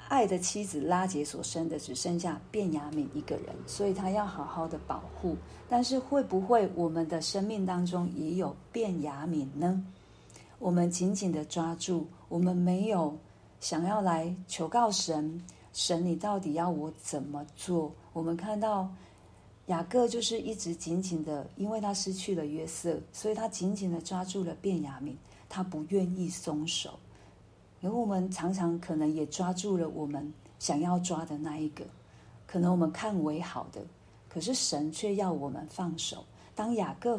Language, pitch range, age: Chinese, 155-195 Hz, 50-69